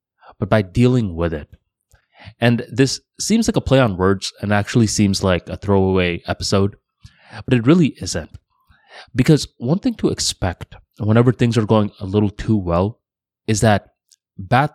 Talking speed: 165 wpm